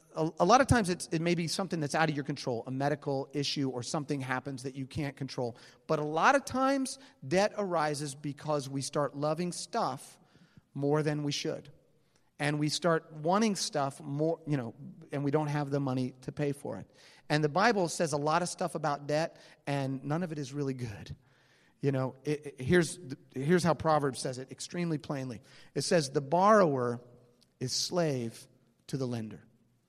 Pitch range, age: 135-170 Hz, 40-59